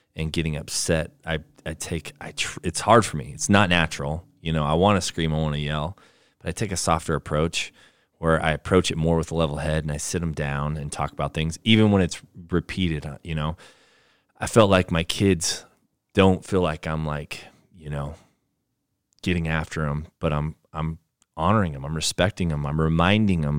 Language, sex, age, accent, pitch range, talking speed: English, male, 20-39, American, 80-90 Hz, 205 wpm